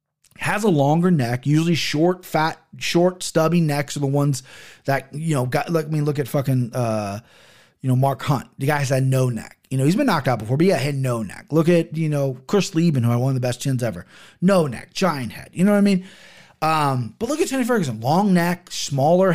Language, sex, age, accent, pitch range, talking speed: English, male, 30-49, American, 135-190 Hz, 240 wpm